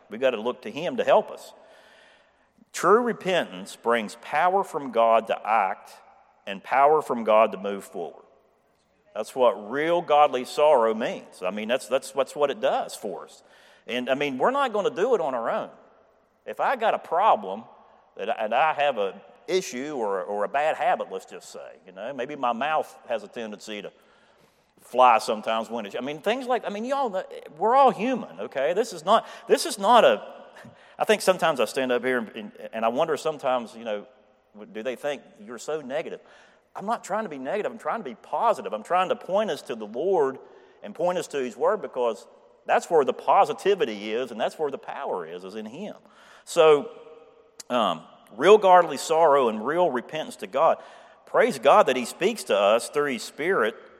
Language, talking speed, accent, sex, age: English, 205 wpm, American, male, 50-69